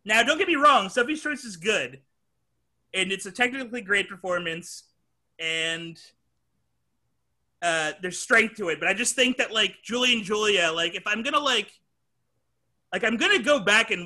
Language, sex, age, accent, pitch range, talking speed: English, male, 30-49, American, 175-240 Hz, 175 wpm